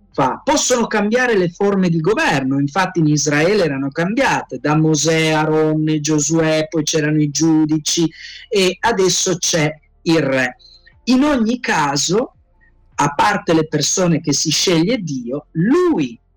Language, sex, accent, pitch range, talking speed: Italian, male, native, 150-185 Hz, 135 wpm